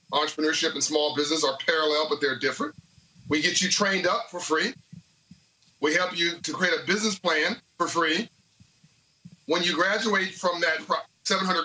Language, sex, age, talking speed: English, male, 40-59, 165 wpm